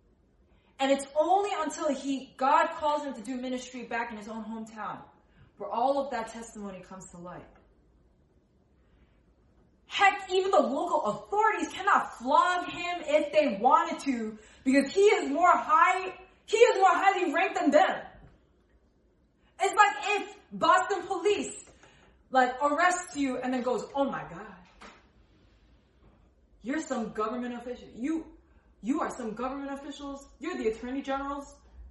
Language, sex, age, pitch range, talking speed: English, female, 20-39, 210-315 Hz, 145 wpm